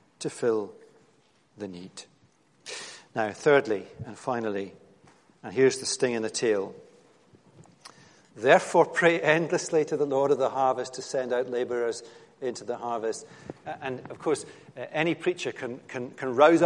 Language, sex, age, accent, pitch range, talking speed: English, male, 50-69, British, 150-225 Hz, 140 wpm